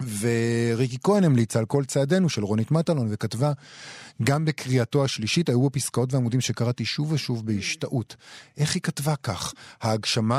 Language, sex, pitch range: Hebrew, male, 110-145 Hz